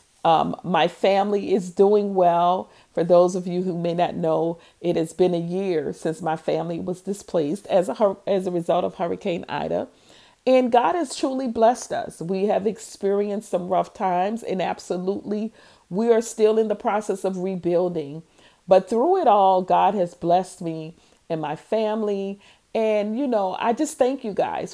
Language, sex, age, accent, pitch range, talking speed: English, female, 40-59, American, 170-205 Hz, 175 wpm